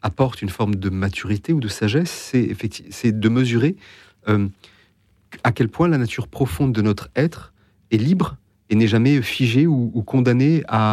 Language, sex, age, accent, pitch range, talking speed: French, male, 40-59, French, 100-120 Hz, 175 wpm